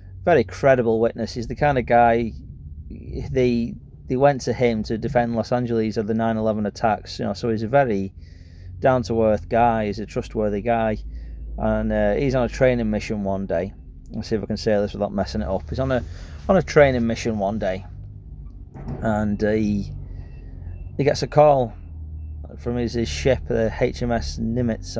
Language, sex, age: English, male, 30-49